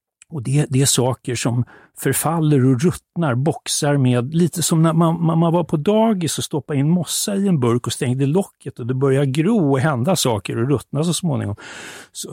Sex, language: male, Swedish